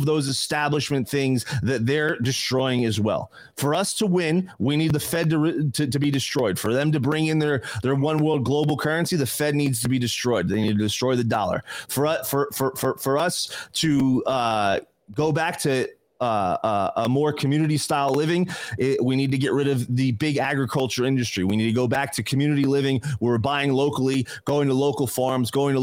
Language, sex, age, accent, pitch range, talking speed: English, male, 30-49, American, 130-155 Hz, 215 wpm